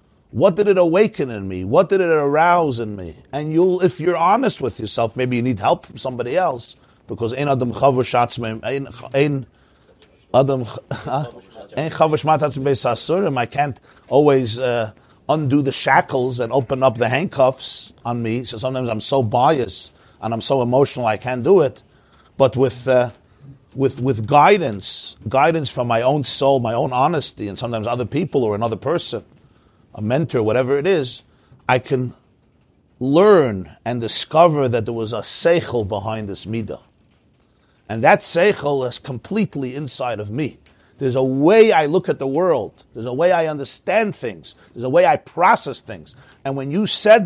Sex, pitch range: male, 120-155 Hz